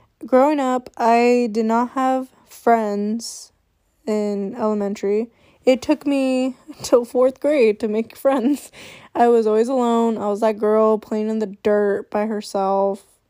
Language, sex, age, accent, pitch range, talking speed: English, female, 10-29, American, 210-250 Hz, 145 wpm